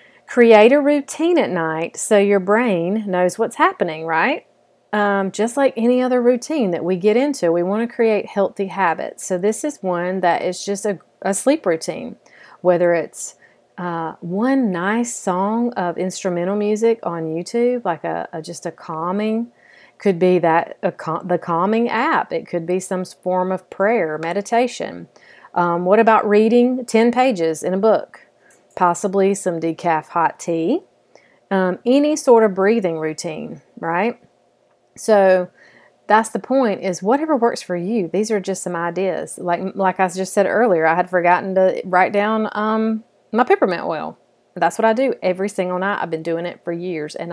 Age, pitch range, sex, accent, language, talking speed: 40-59, 175-230 Hz, female, American, English, 175 wpm